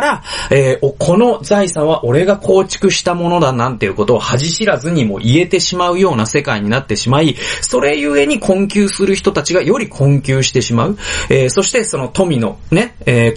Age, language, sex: 40-59, Japanese, male